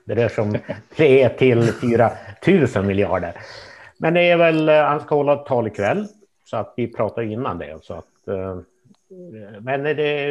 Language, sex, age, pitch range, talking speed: Swedish, male, 60-79, 105-140 Hz, 155 wpm